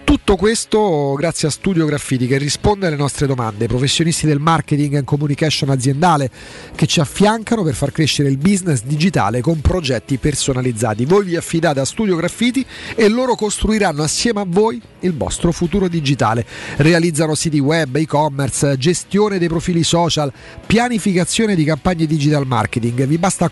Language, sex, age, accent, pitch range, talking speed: Italian, male, 40-59, native, 145-195 Hz, 155 wpm